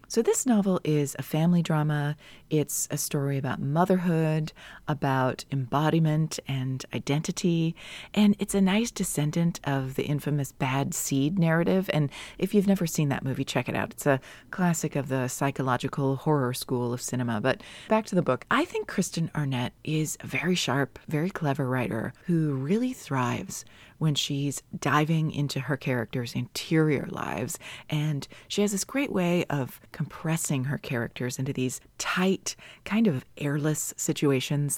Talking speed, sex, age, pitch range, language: 155 wpm, female, 30-49, 135-175 Hz, English